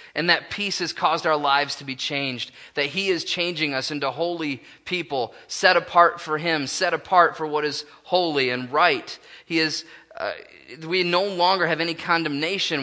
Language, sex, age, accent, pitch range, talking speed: English, male, 20-39, American, 140-165 Hz, 185 wpm